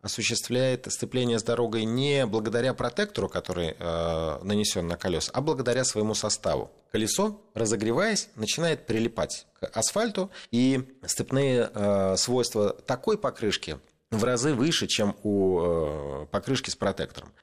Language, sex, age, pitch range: Russian, male, 30-49, 95-120 Hz